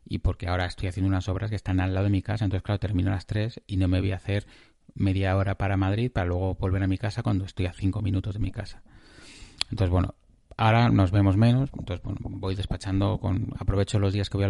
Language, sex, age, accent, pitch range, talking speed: Spanish, male, 30-49, Spanish, 95-110 Hz, 255 wpm